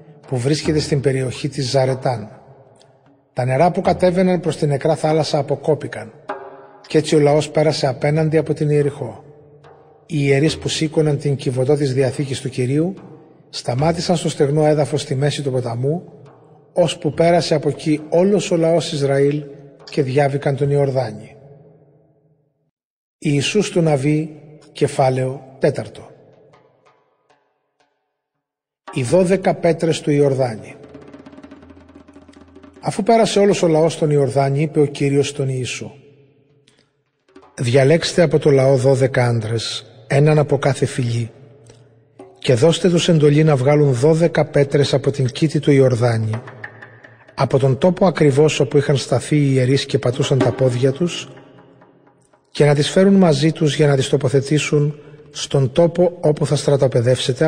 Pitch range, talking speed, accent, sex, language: 135-155 Hz, 135 wpm, native, male, Greek